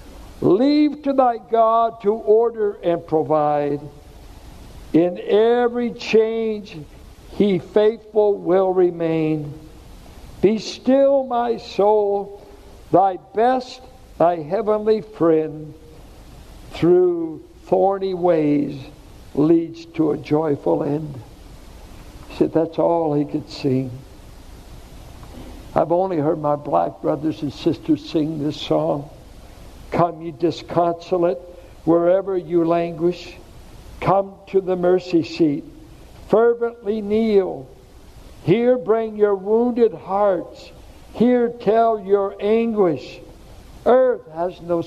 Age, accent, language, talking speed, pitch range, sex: 60-79, American, English, 100 wpm, 155-210 Hz, male